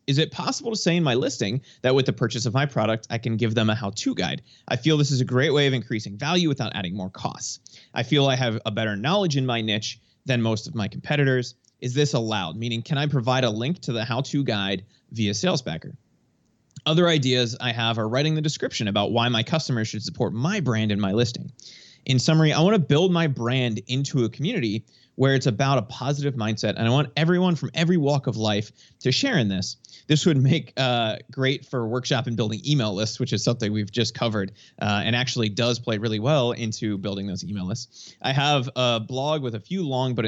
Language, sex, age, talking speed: English, male, 30-49, 230 wpm